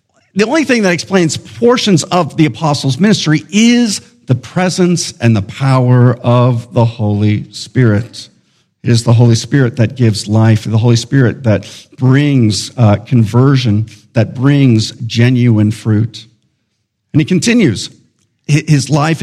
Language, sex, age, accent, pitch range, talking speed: English, male, 50-69, American, 110-150 Hz, 135 wpm